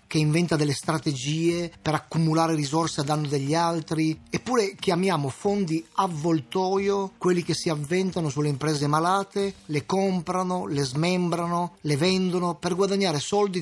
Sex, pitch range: male, 150-180 Hz